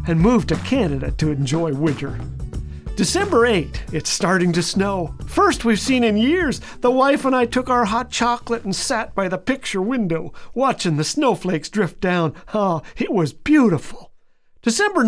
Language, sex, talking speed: English, male, 170 wpm